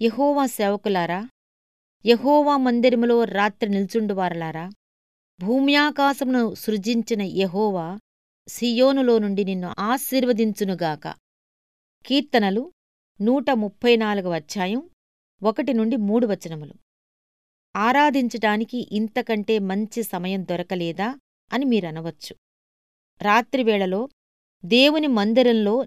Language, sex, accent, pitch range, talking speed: Telugu, female, native, 185-235 Hz, 70 wpm